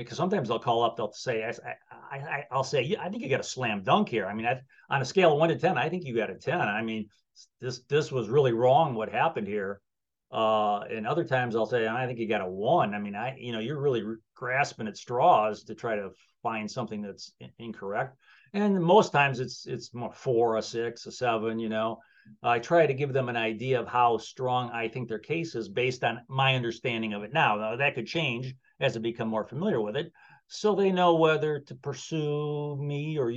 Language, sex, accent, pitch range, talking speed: English, male, American, 115-155 Hz, 235 wpm